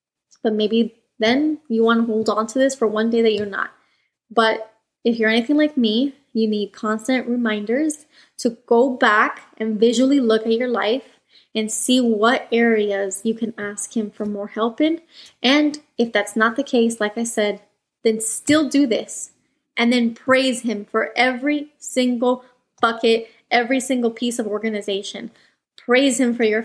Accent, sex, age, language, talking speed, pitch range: American, female, 20-39, English, 175 wpm, 220-260 Hz